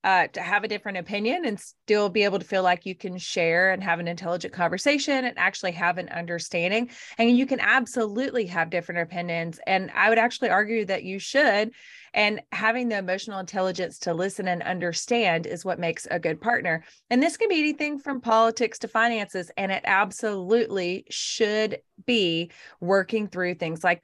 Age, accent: 30-49, American